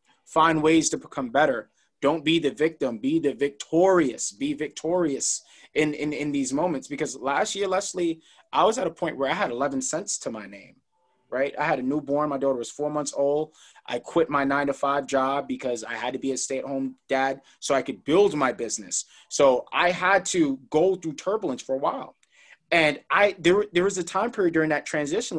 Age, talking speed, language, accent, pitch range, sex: 30-49, 215 wpm, English, American, 140-185 Hz, male